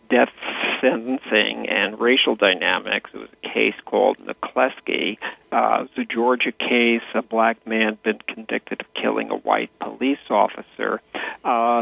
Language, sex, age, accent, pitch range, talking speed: English, male, 50-69, American, 110-130 Hz, 140 wpm